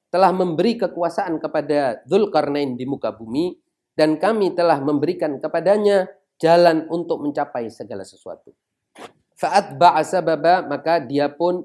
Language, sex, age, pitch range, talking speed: Indonesian, male, 40-59, 150-195 Hz, 115 wpm